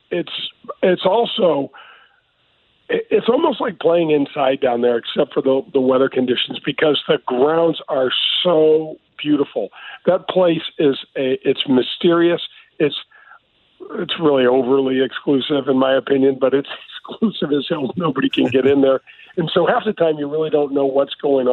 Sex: male